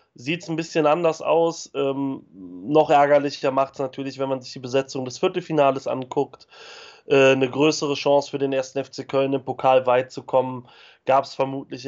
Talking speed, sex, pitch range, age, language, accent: 185 wpm, male, 125-140 Hz, 30-49, German, German